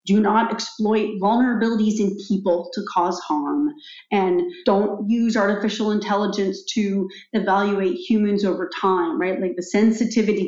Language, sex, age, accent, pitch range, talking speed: English, female, 40-59, American, 195-240 Hz, 130 wpm